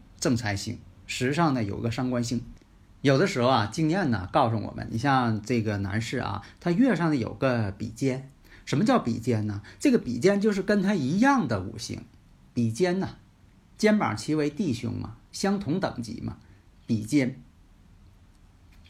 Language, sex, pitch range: Chinese, male, 105-145 Hz